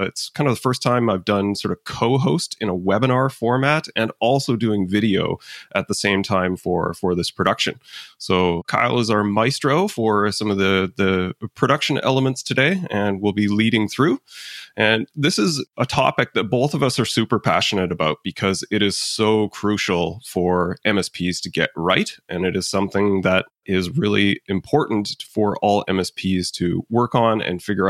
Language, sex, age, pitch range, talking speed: English, male, 30-49, 95-115 Hz, 180 wpm